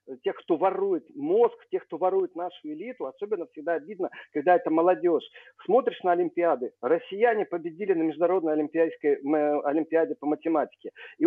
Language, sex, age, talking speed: Russian, male, 50-69, 145 wpm